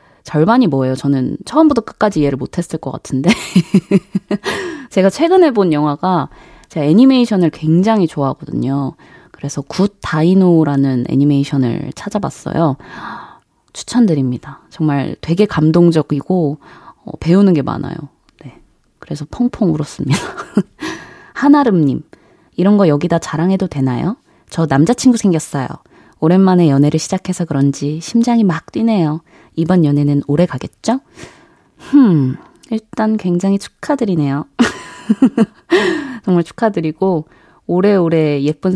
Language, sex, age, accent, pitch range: Korean, female, 20-39, native, 150-220 Hz